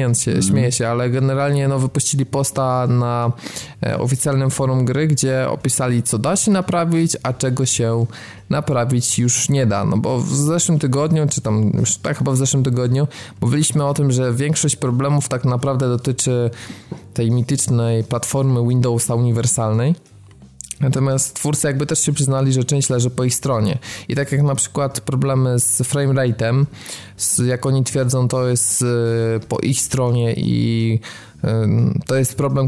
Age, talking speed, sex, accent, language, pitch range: 20-39, 150 wpm, male, native, Polish, 115-135 Hz